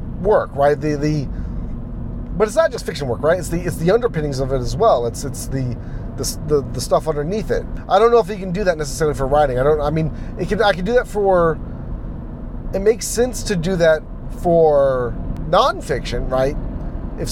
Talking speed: 210 wpm